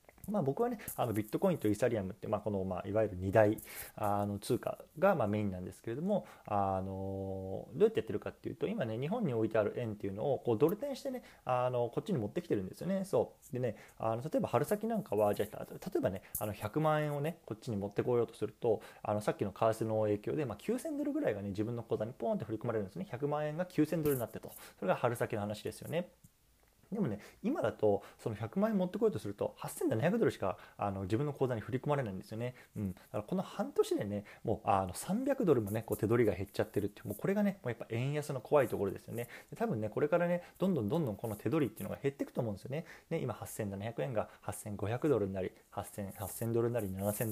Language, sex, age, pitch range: Japanese, male, 20-39, 105-155 Hz